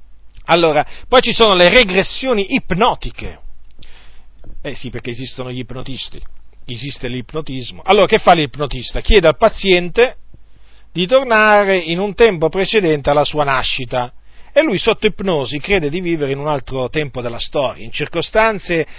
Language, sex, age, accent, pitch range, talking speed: Italian, male, 40-59, native, 115-170 Hz, 145 wpm